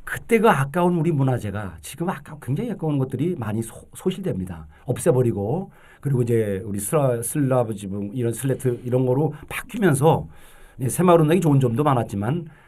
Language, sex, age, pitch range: Korean, male, 40-59, 120-180 Hz